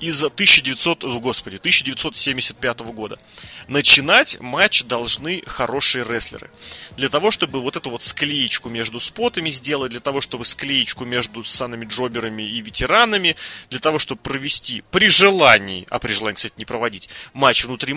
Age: 30-49